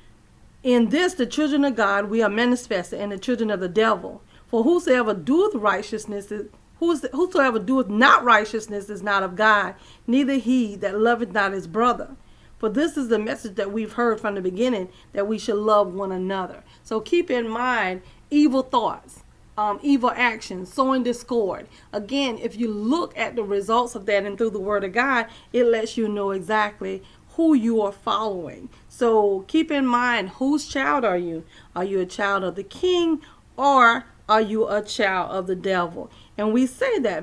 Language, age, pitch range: English, 40-59, 200-245 Hz